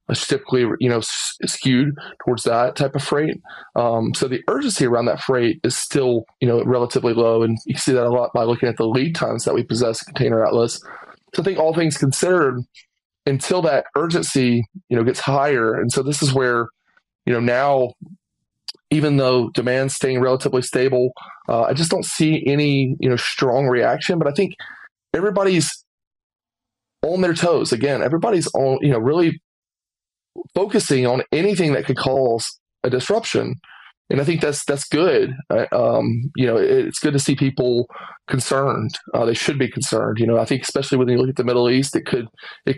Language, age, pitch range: English, 20-39, 120-145 Hz